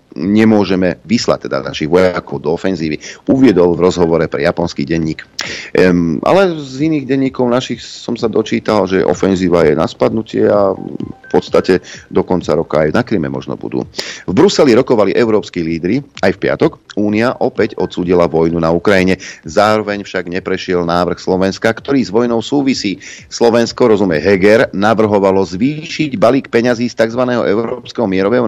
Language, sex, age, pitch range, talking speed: Slovak, male, 40-59, 90-115 Hz, 150 wpm